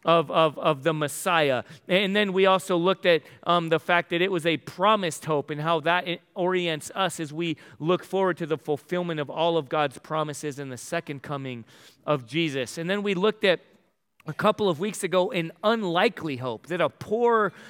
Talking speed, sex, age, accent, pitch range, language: 200 wpm, male, 40-59, American, 150-185 Hz, English